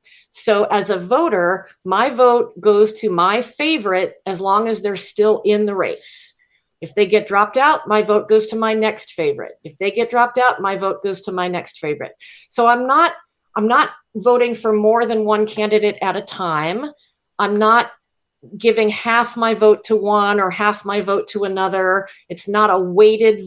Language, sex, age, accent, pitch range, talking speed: English, female, 50-69, American, 195-235 Hz, 190 wpm